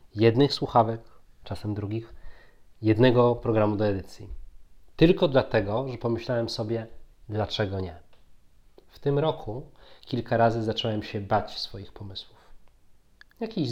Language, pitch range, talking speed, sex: Polish, 105-125 Hz, 115 wpm, male